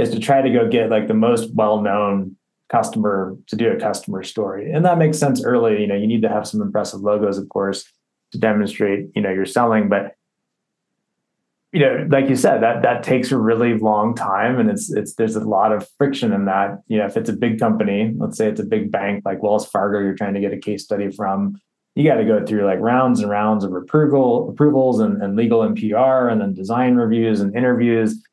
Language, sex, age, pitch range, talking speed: English, male, 20-39, 100-120 Hz, 225 wpm